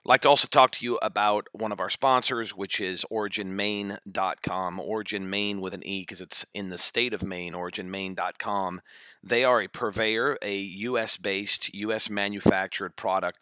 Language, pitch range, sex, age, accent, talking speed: English, 95-110 Hz, male, 40-59, American, 150 wpm